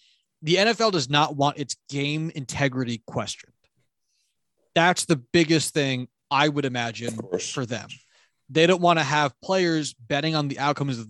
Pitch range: 130-160 Hz